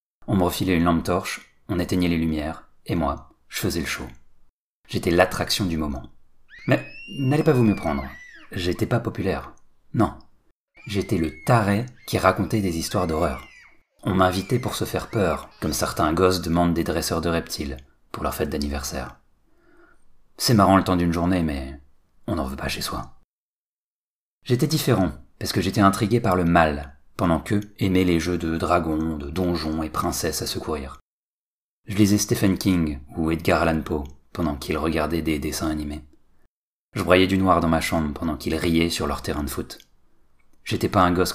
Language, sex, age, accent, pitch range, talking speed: French, male, 40-59, French, 75-95 Hz, 180 wpm